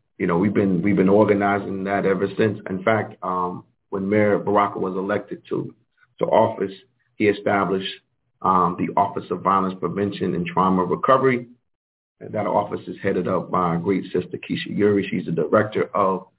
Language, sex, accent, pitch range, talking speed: English, male, American, 95-120 Hz, 175 wpm